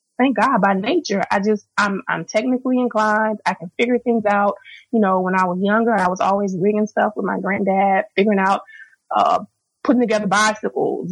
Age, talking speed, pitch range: 20-39, 190 wpm, 220-310 Hz